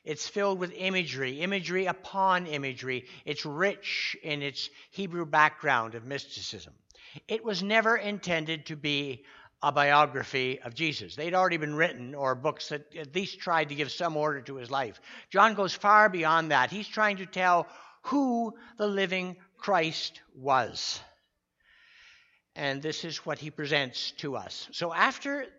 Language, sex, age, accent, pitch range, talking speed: English, male, 60-79, American, 140-190 Hz, 155 wpm